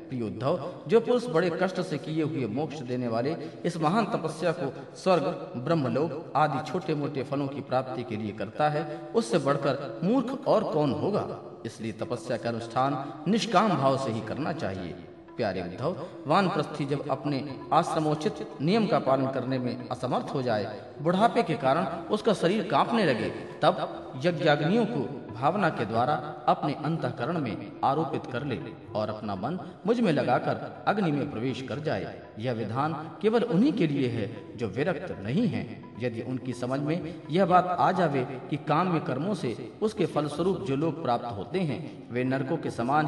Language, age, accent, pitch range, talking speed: Hindi, 40-59, native, 130-175 Hz, 165 wpm